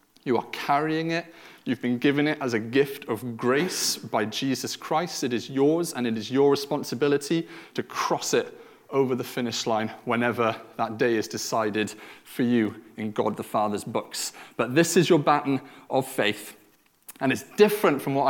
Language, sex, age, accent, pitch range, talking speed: English, male, 30-49, British, 120-150 Hz, 180 wpm